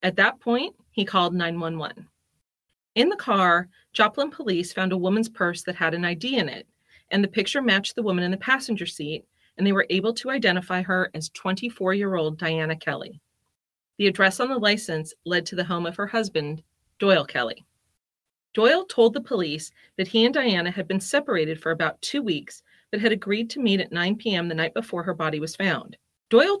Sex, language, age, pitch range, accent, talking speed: female, English, 30-49, 170-220 Hz, American, 195 wpm